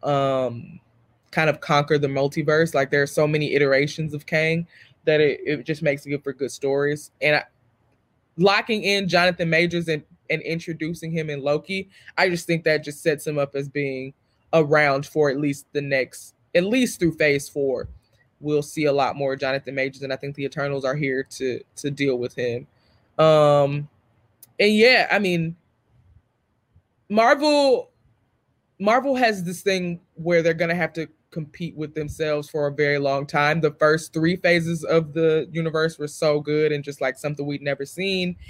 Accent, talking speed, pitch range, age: American, 180 wpm, 135-165 Hz, 20-39